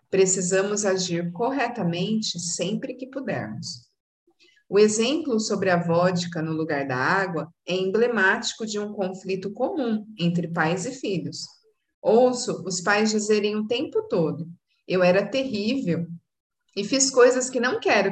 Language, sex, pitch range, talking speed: Portuguese, female, 170-240 Hz, 135 wpm